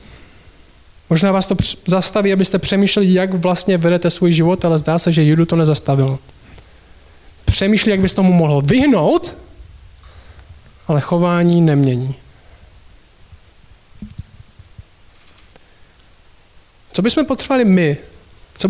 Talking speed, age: 105 wpm, 20-39